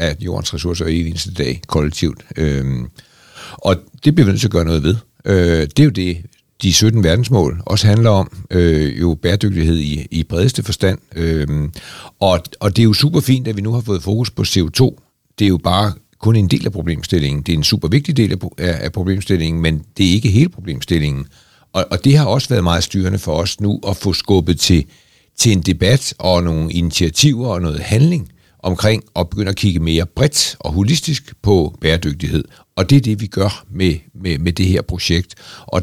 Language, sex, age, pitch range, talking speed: Danish, male, 60-79, 85-115 Hz, 205 wpm